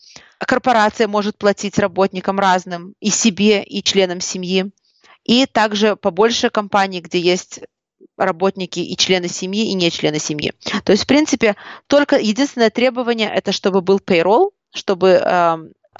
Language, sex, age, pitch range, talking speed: Russian, female, 30-49, 185-225 Hz, 145 wpm